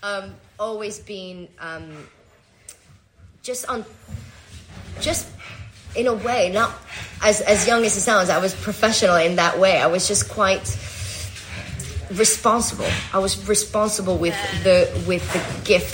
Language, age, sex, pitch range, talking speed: English, 20-39, female, 150-195 Hz, 135 wpm